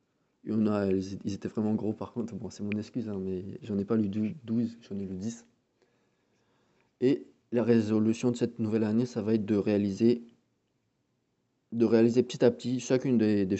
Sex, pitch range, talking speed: male, 100-120 Hz, 190 wpm